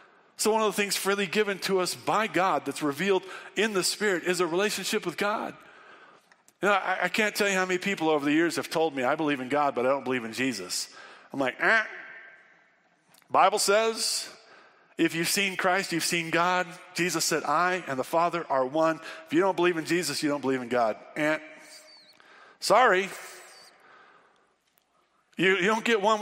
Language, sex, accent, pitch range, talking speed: English, male, American, 160-205 Hz, 195 wpm